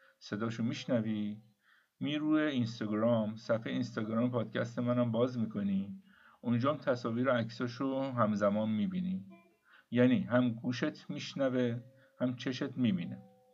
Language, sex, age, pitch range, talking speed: Persian, male, 50-69, 115-155 Hz, 115 wpm